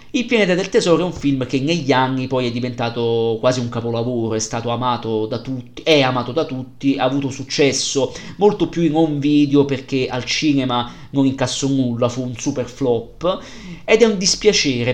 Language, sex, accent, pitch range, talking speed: Italian, male, native, 125-155 Hz, 190 wpm